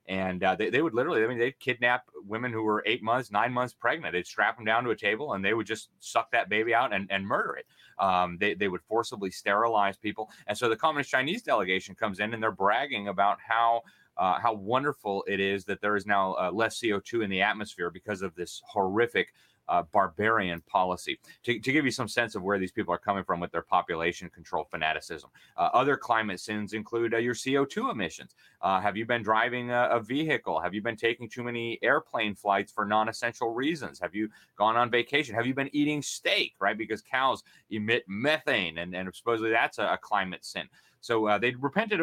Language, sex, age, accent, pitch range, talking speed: English, male, 30-49, American, 100-120 Hz, 215 wpm